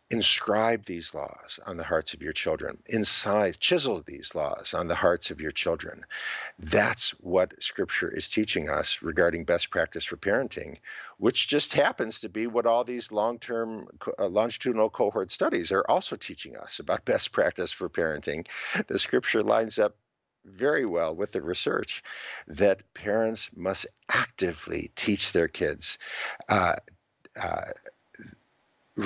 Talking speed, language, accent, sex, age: 140 wpm, English, American, male, 50-69